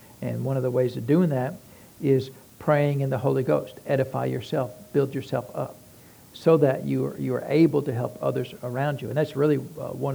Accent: American